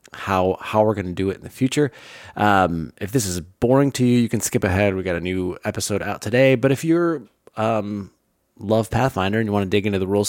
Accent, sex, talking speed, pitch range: American, male, 245 wpm, 95-125 Hz